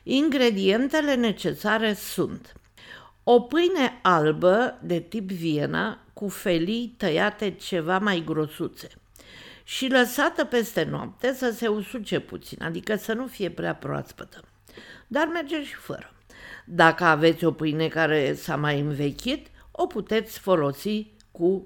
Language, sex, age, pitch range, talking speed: Romanian, female, 50-69, 170-245 Hz, 125 wpm